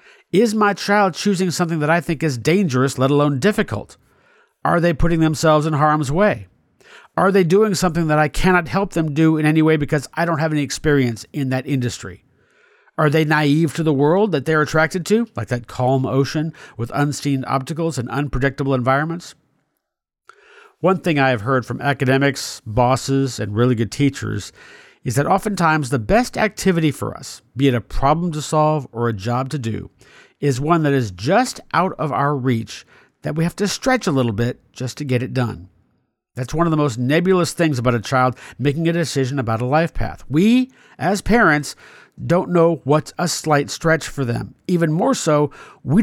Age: 50-69